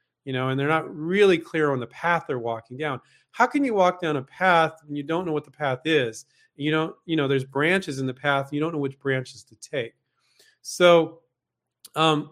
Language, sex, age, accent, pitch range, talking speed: English, male, 40-59, American, 135-175 Hz, 225 wpm